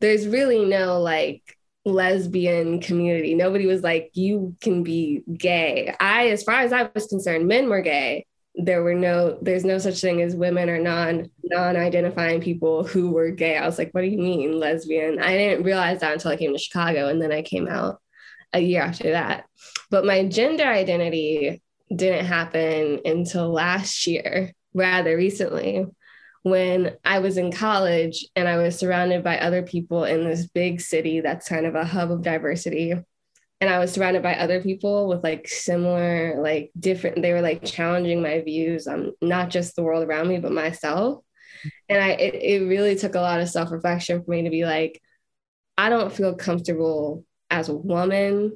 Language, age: English, 20-39